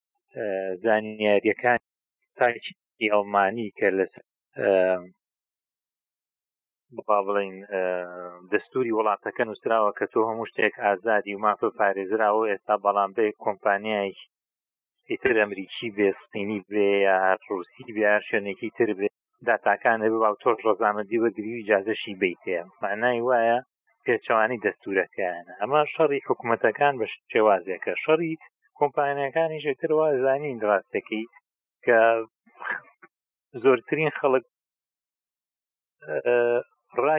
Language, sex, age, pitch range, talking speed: Arabic, male, 30-49, 100-125 Hz, 120 wpm